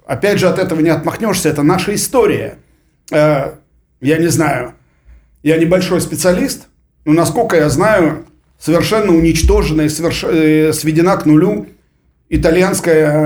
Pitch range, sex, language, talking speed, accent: 135-170 Hz, male, Russian, 120 wpm, native